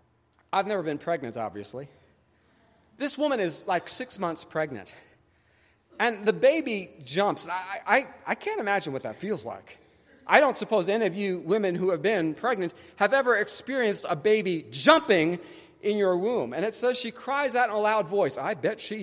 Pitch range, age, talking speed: 180-300 Hz, 40-59, 185 wpm